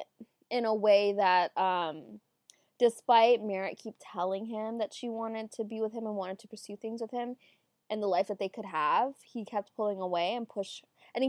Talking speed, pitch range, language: 205 wpm, 190-230 Hz, English